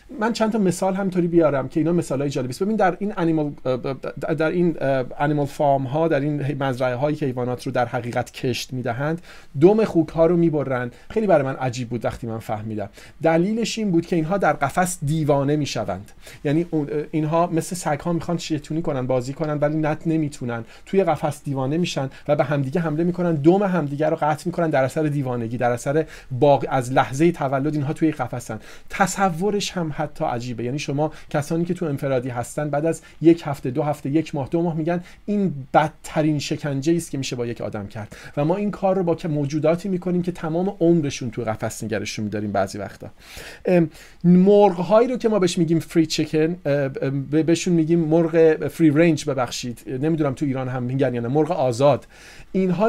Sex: male